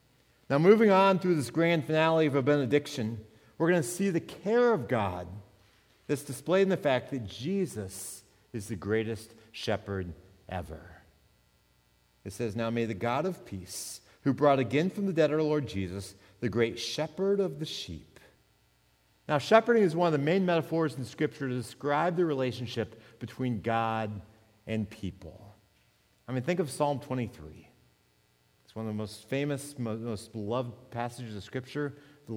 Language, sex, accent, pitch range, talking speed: English, male, American, 105-165 Hz, 165 wpm